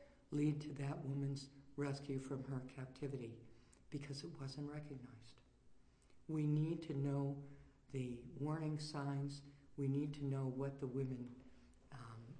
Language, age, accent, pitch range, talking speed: English, 60-79, American, 135-165 Hz, 130 wpm